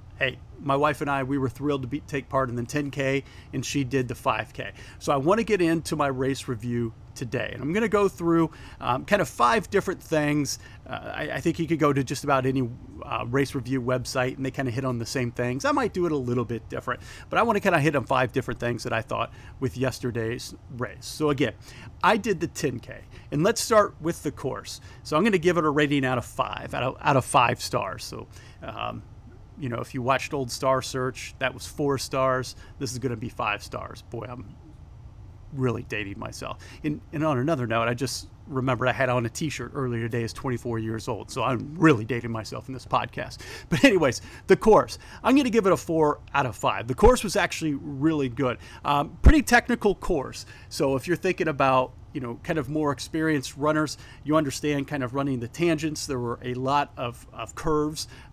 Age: 40-59